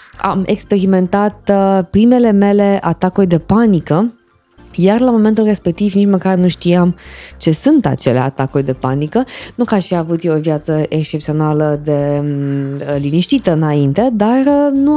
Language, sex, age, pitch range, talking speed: Romanian, female, 20-39, 155-225 Hz, 135 wpm